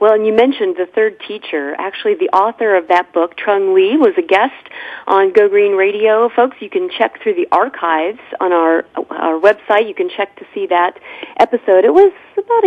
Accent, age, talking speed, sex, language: American, 40-59, 205 wpm, female, English